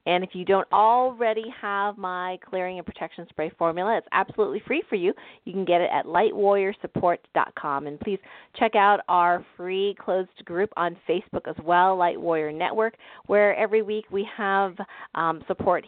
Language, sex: English, female